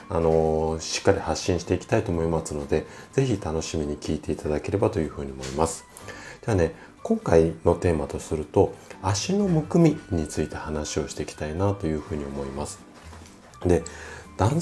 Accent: native